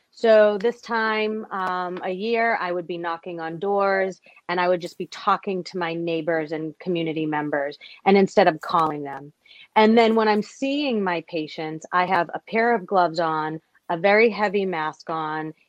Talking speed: 185 wpm